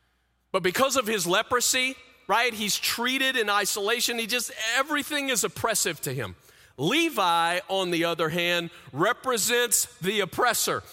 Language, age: English, 40-59